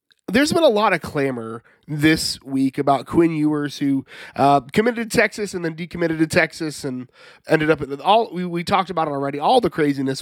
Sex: male